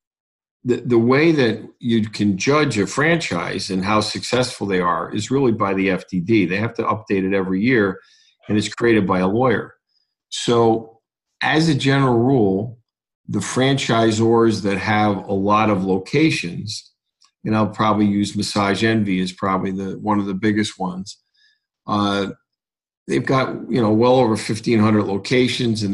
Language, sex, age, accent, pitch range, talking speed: English, male, 50-69, American, 100-115 Hz, 160 wpm